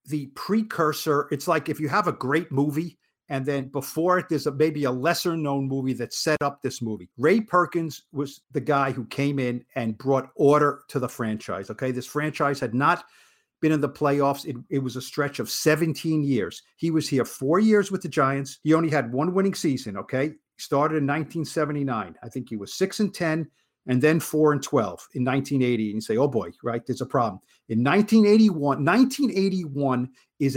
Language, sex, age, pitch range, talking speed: English, male, 50-69, 135-165 Hz, 200 wpm